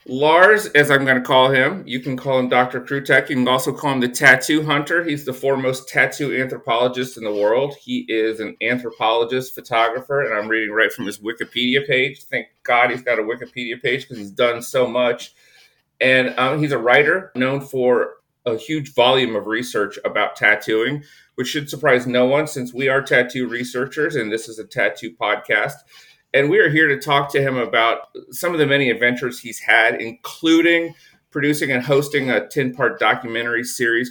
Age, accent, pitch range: 40-59, American, 115-140 Hz